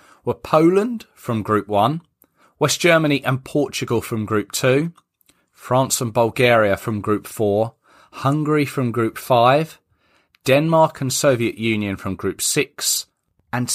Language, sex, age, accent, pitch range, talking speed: English, male, 30-49, British, 100-145 Hz, 130 wpm